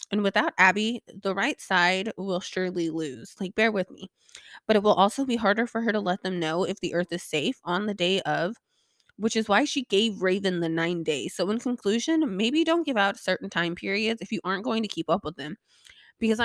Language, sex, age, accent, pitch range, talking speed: English, female, 20-39, American, 165-215 Hz, 230 wpm